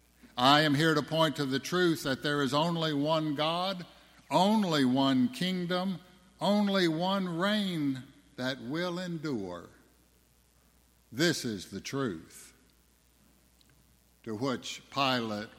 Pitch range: 110-155 Hz